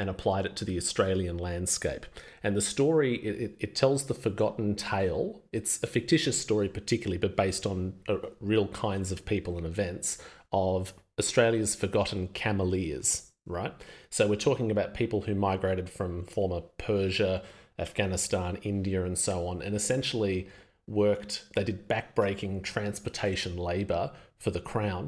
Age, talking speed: 30-49, 150 wpm